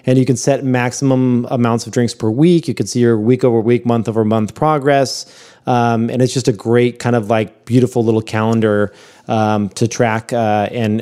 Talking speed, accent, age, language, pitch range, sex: 185 wpm, American, 20-39, English, 105-130 Hz, male